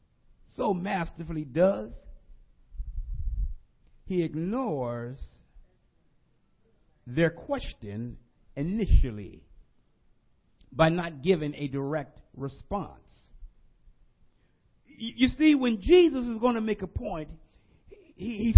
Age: 50-69